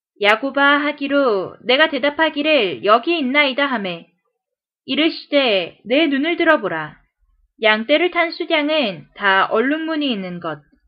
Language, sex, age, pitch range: Korean, female, 20-39, 215-315 Hz